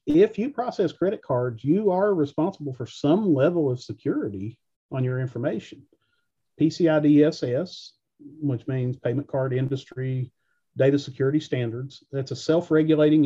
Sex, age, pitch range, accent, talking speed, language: male, 40-59, 130-160 Hz, American, 130 wpm, English